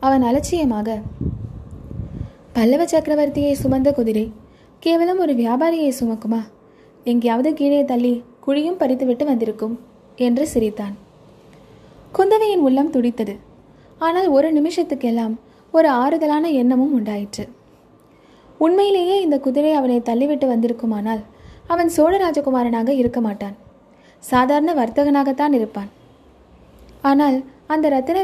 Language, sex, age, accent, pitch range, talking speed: Tamil, female, 20-39, native, 235-310 Hz, 95 wpm